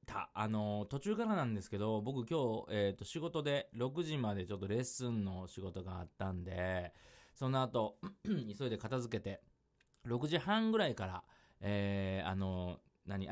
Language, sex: Japanese, male